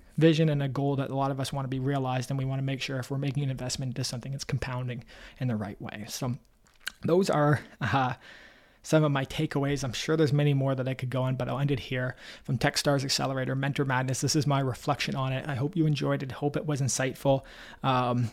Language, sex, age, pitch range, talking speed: English, male, 20-39, 125-145 Hz, 250 wpm